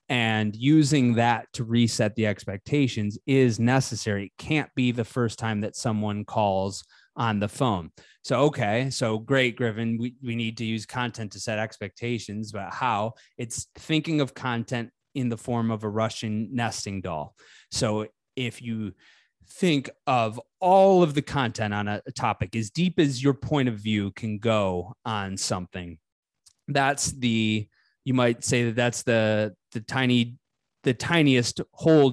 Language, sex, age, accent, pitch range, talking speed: English, male, 30-49, American, 110-130 Hz, 160 wpm